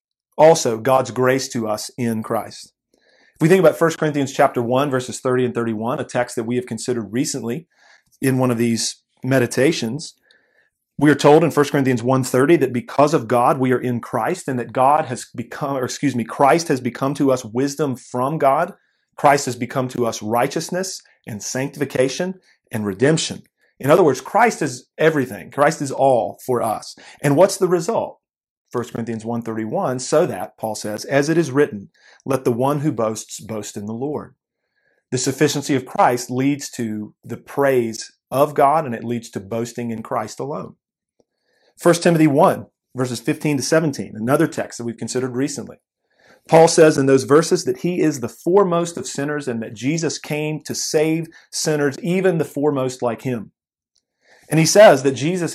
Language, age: English, 40-59